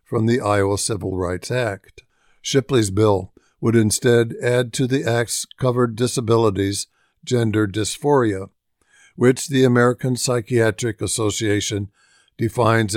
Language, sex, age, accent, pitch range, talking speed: English, male, 60-79, American, 105-125 Hz, 110 wpm